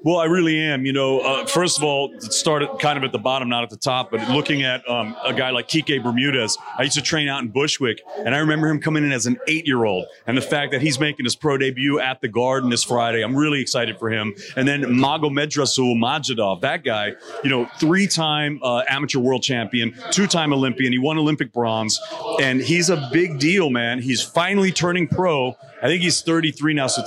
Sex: male